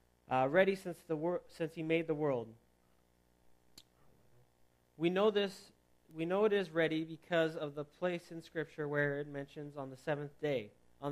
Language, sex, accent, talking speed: English, male, American, 175 wpm